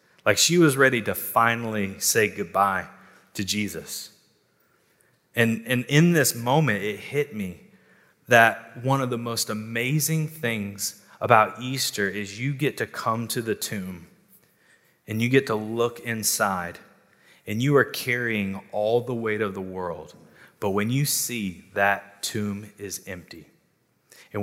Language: English